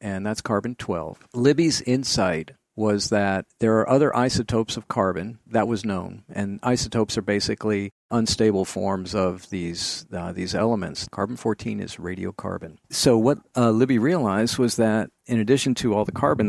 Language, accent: English, American